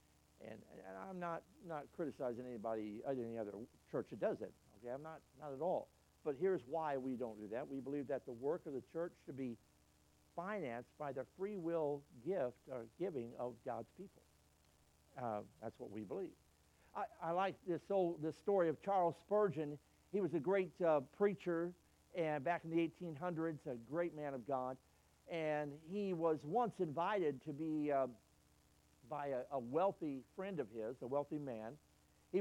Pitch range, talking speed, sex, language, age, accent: 120-180 Hz, 195 wpm, male, English, 60-79, American